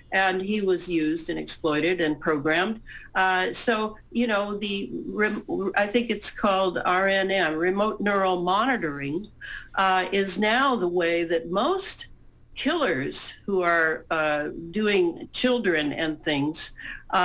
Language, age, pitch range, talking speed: English, 60-79, 170-215 Hz, 125 wpm